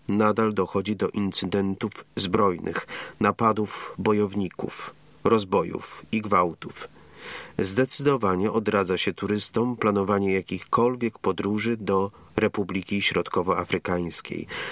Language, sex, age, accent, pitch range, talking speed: Polish, male, 40-59, native, 95-110 Hz, 80 wpm